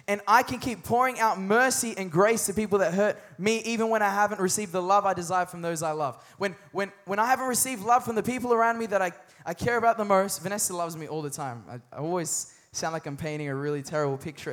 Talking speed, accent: 260 wpm, Australian